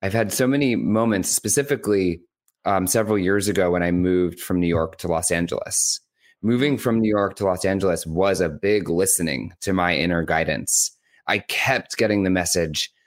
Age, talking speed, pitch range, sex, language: 30-49, 180 wpm, 90-110 Hz, male, English